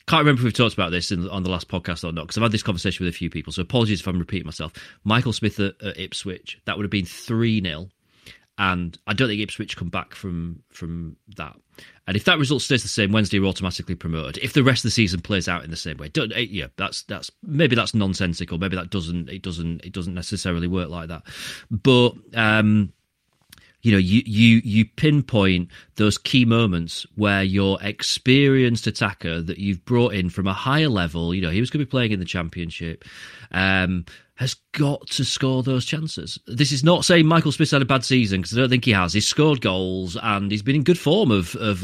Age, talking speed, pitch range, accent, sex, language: 30-49, 230 wpm, 90-125 Hz, British, male, English